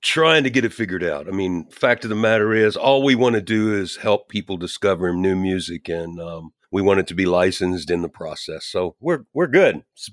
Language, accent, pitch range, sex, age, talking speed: English, American, 95-120 Hz, male, 50-69, 235 wpm